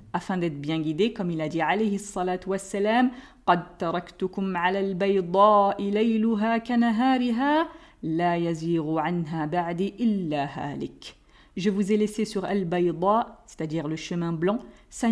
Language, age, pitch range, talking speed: French, 40-59, 185-235 Hz, 140 wpm